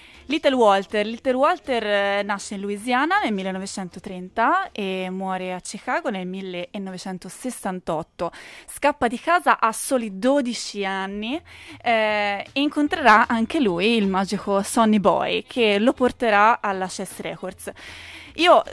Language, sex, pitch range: Italian, female, 200-255 Hz